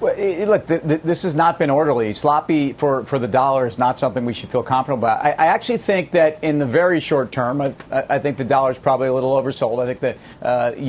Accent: American